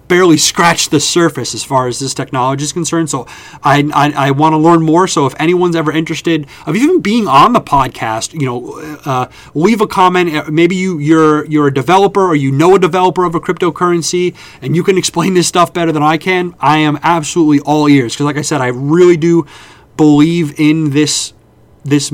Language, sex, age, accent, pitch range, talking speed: English, male, 30-49, American, 135-165 Hz, 205 wpm